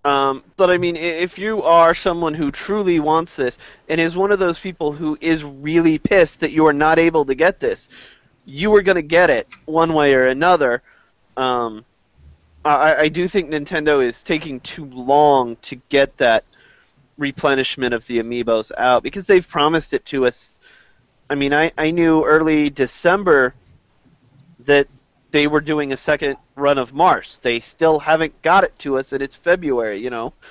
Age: 30-49